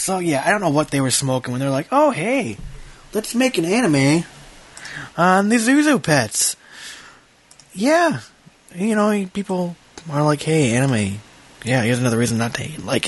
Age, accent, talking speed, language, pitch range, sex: 20-39, American, 170 wpm, English, 125-165 Hz, male